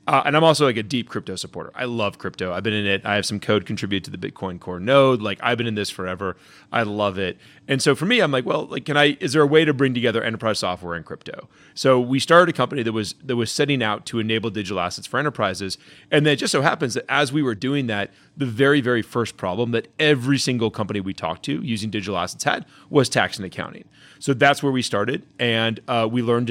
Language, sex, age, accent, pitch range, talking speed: English, male, 30-49, American, 105-140 Hz, 255 wpm